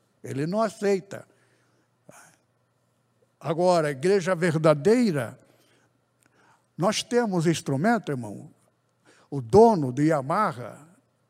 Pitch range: 145-205 Hz